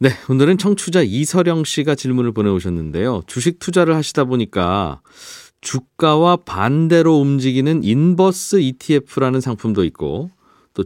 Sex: male